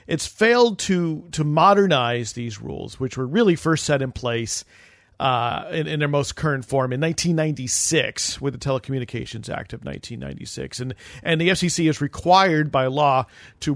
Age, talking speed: 40-59, 165 wpm